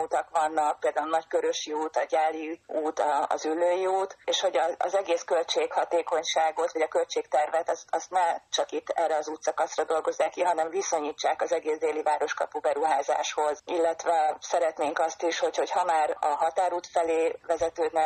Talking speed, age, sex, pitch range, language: 160 wpm, 30-49, female, 155-175 Hz, Hungarian